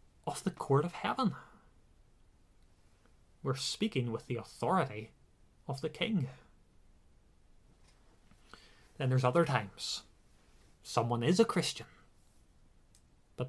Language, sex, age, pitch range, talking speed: English, male, 20-39, 110-150 Hz, 100 wpm